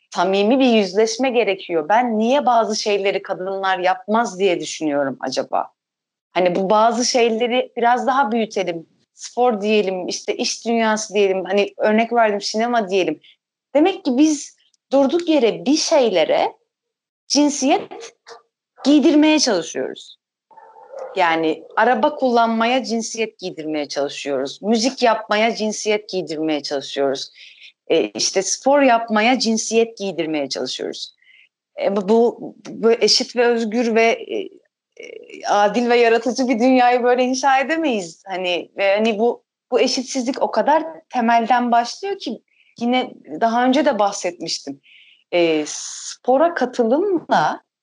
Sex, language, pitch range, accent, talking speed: female, Turkish, 205-285 Hz, native, 120 wpm